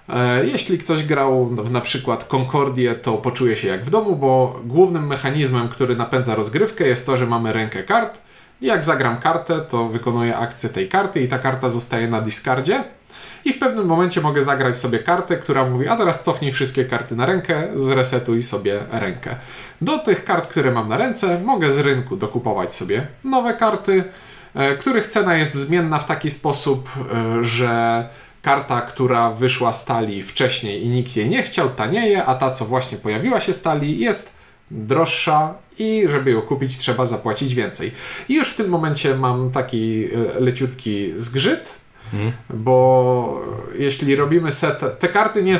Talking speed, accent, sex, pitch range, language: 165 wpm, native, male, 115-155 Hz, Polish